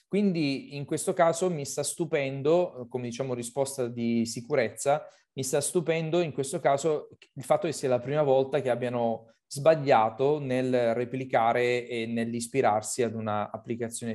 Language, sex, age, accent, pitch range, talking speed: Italian, male, 30-49, native, 120-145 Hz, 145 wpm